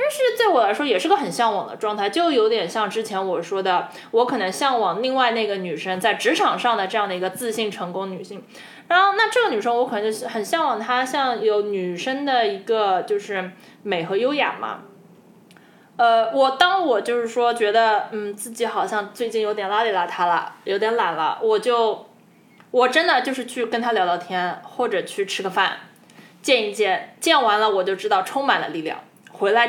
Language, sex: Chinese, female